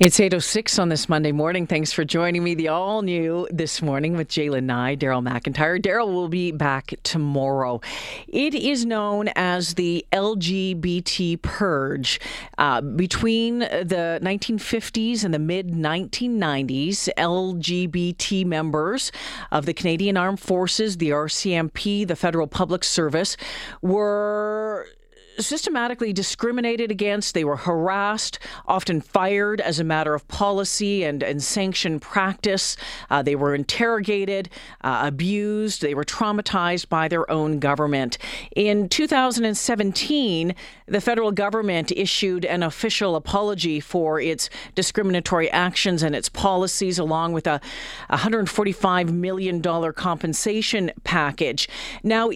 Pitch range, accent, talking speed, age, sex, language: 160-205 Hz, American, 120 wpm, 40-59, female, English